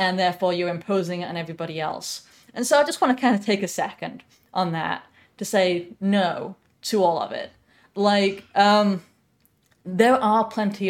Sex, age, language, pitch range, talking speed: female, 20-39, English, 165-200 Hz, 180 wpm